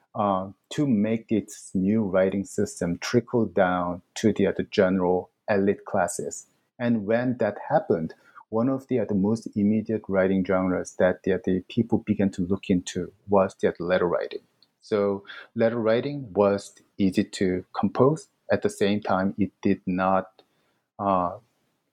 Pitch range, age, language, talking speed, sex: 95-115 Hz, 50-69, English, 150 wpm, male